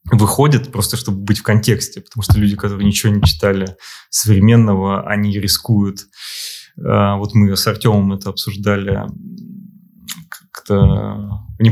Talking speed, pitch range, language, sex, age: 125 wpm, 100-120 Hz, Russian, male, 20-39